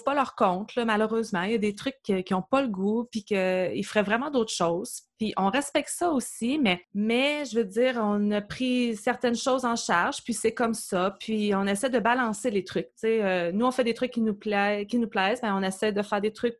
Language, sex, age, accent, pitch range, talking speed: French, female, 30-49, Canadian, 210-250 Hz, 250 wpm